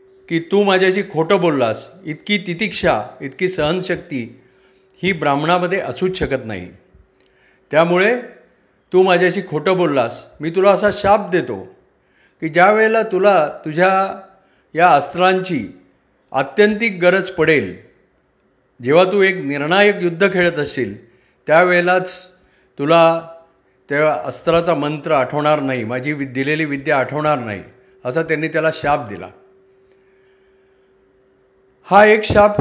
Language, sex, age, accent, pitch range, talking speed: Marathi, male, 50-69, native, 145-190 Hz, 110 wpm